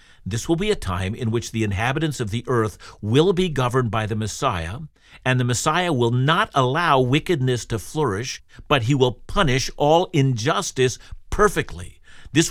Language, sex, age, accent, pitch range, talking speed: English, male, 50-69, American, 110-145 Hz, 170 wpm